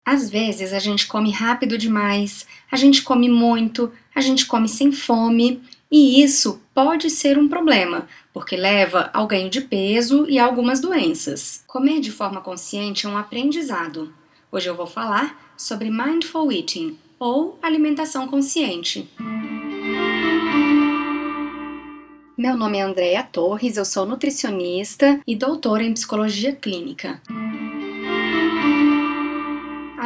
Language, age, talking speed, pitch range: Portuguese, 20-39, 125 wpm, 210-295 Hz